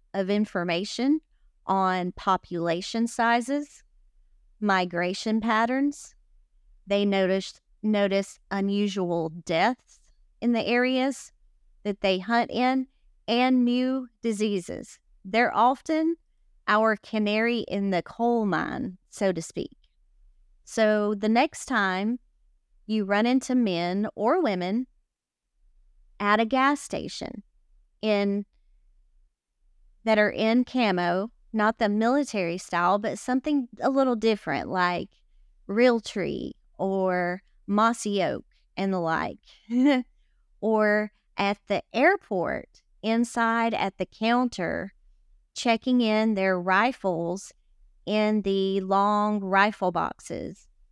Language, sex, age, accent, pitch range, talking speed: English, female, 30-49, American, 190-240 Hz, 100 wpm